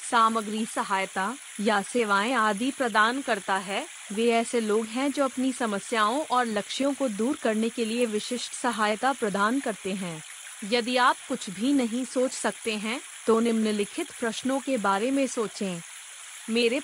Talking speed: 155 wpm